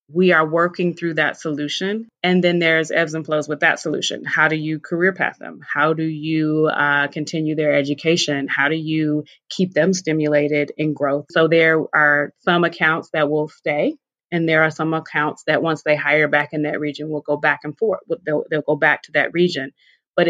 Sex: female